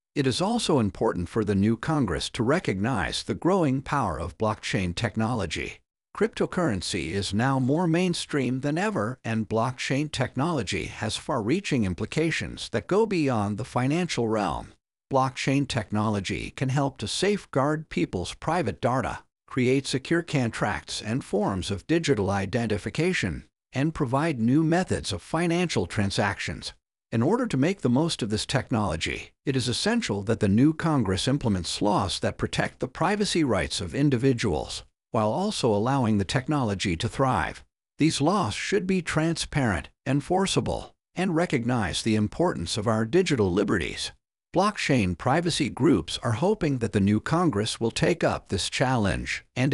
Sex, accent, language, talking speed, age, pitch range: male, American, English, 145 wpm, 50-69, 105-155 Hz